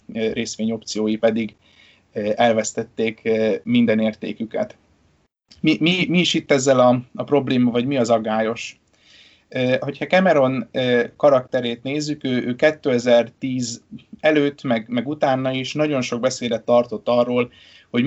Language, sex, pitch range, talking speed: Hungarian, male, 115-130 Hz, 120 wpm